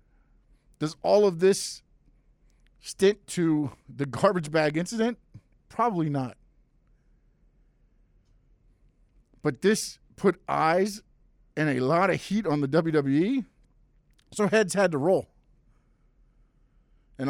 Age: 50-69